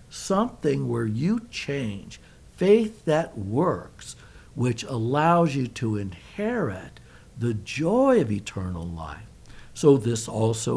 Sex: male